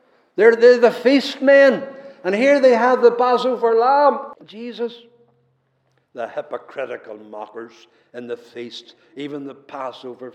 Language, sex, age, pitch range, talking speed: English, male, 60-79, 170-245 Hz, 120 wpm